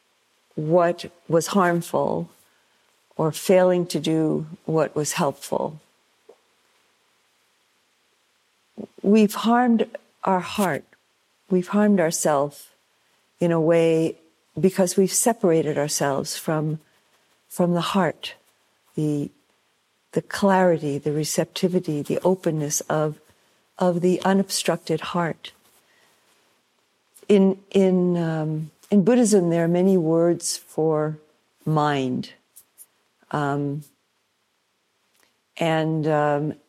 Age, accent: 50-69, American